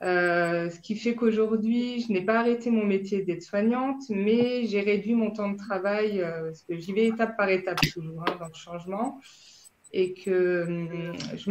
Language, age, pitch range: French, 20-39, 185-220 Hz